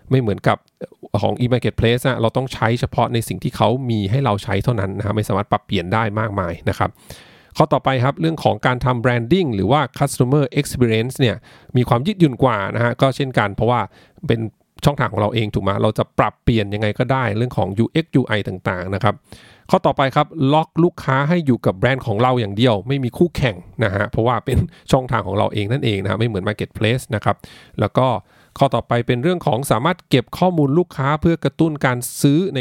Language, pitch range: English, 105-140 Hz